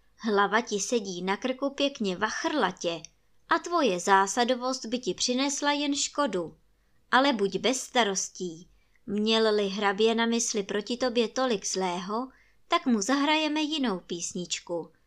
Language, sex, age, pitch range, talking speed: Czech, male, 20-39, 190-260 Hz, 125 wpm